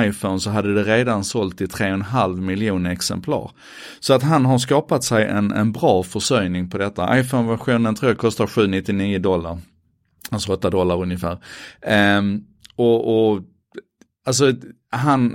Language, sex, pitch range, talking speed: Swedish, male, 100-150 Hz, 145 wpm